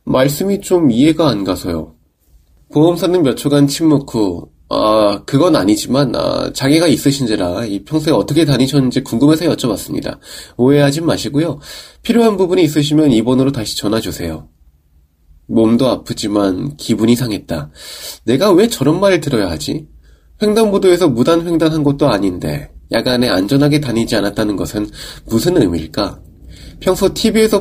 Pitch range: 100-150 Hz